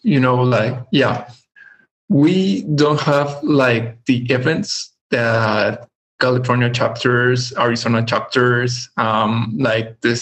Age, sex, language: 20-39, male, English